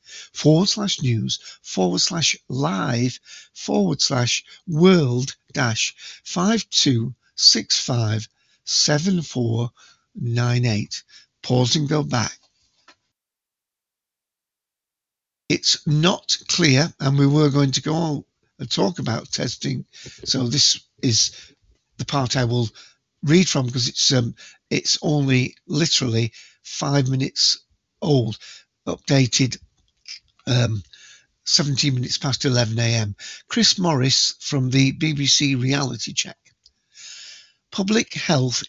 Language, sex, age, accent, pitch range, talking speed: English, male, 60-79, British, 125-160 Hz, 105 wpm